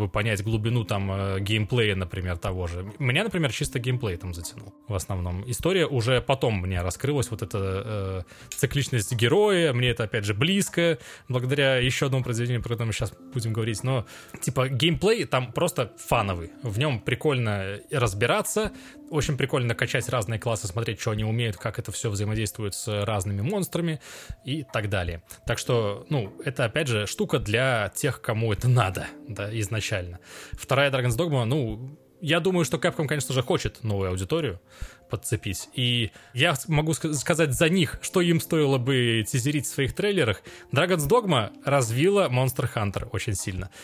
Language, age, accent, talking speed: Russian, 20-39, native, 160 wpm